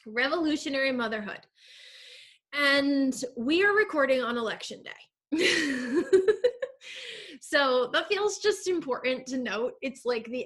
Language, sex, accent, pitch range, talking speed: English, female, American, 230-310 Hz, 110 wpm